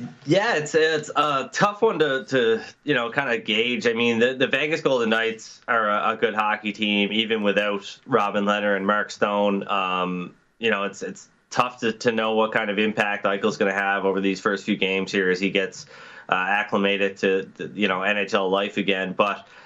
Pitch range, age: 95-115 Hz, 20-39